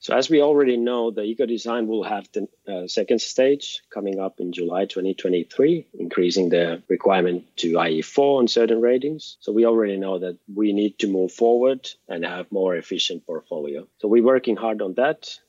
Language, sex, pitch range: English, male, 95-120 Hz